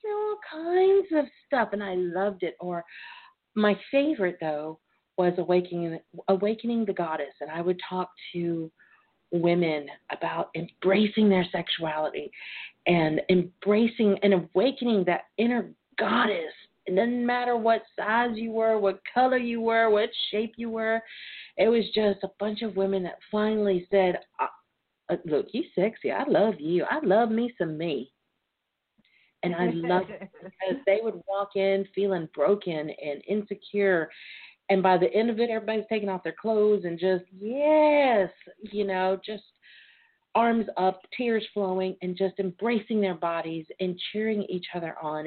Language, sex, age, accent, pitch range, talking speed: English, female, 40-59, American, 175-220 Hz, 155 wpm